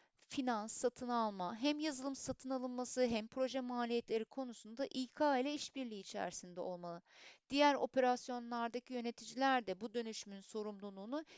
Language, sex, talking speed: Turkish, female, 120 wpm